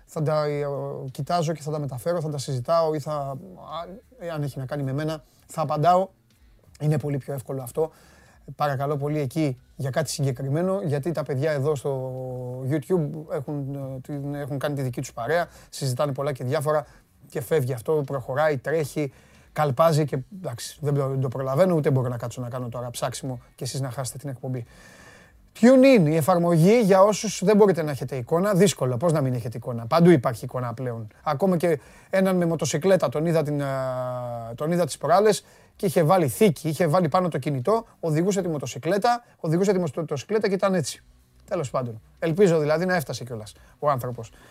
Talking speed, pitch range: 175 wpm, 135-175 Hz